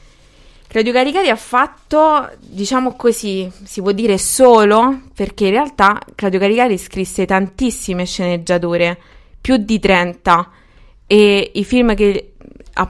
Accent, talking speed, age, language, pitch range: native, 120 wpm, 20-39, Italian, 180-215 Hz